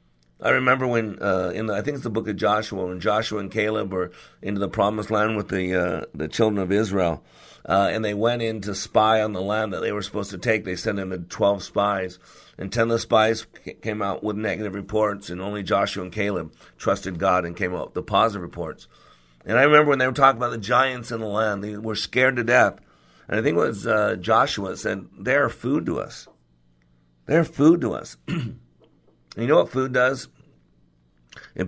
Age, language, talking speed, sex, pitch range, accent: 50-69, English, 220 wpm, male, 90-120 Hz, American